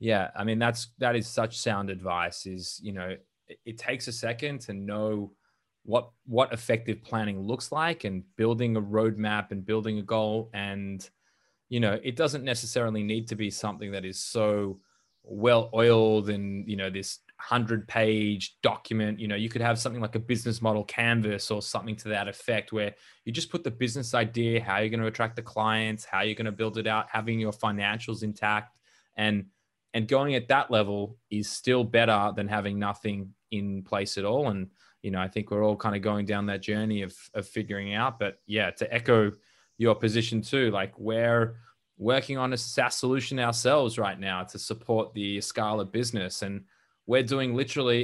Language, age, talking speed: English, 20-39, 195 wpm